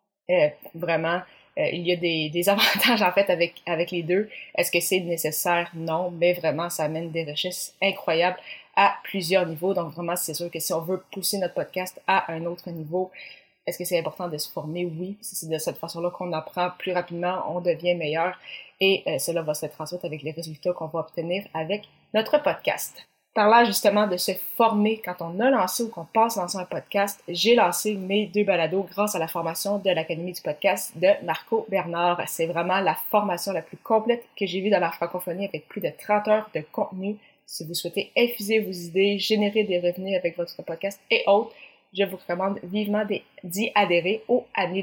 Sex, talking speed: female, 205 wpm